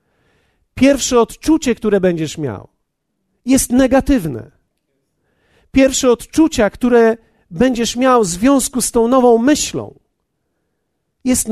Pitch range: 185-245 Hz